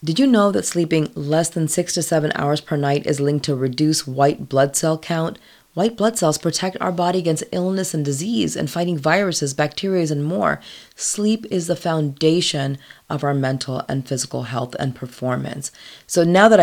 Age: 30-49